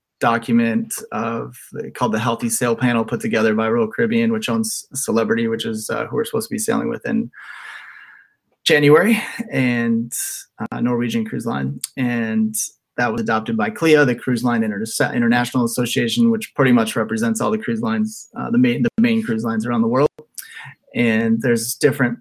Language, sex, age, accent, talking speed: English, male, 20-39, American, 175 wpm